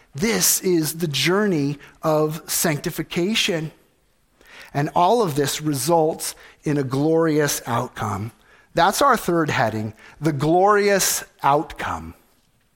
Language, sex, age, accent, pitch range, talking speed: English, male, 50-69, American, 125-155 Hz, 105 wpm